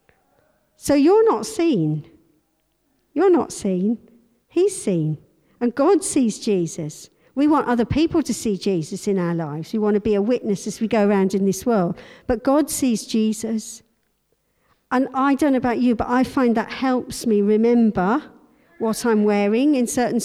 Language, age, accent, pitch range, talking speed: English, 50-69, British, 210-280 Hz, 170 wpm